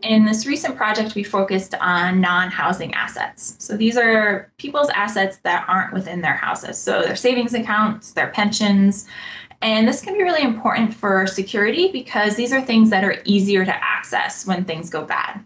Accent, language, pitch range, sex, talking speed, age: American, English, 195-235 Hz, female, 180 wpm, 20-39